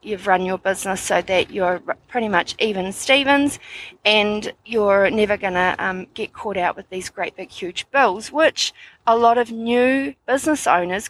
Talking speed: 175 wpm